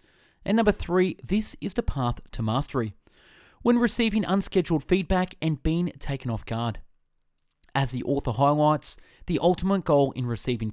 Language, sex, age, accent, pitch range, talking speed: English, male, 30-49, Australian, 115-170 Hz, 150 wpm